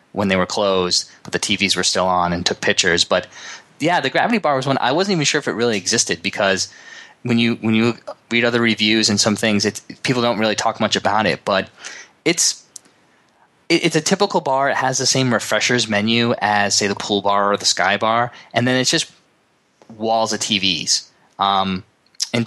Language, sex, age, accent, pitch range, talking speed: English, male, 20-39, American, 100-115 Hz, 210 wpm